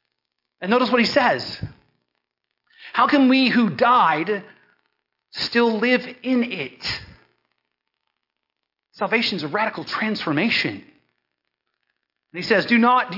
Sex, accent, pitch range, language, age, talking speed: male, American, 185-260 Hz, English, 40-59, 110 wpm